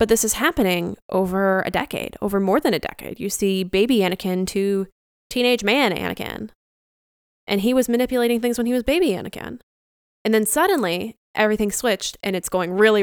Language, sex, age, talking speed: English, female, 10-29, 180 wpm